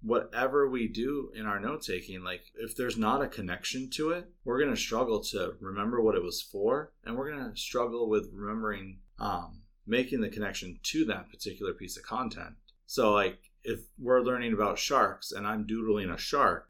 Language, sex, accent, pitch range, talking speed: English, male, American, 105-125 Hz, 195 wpm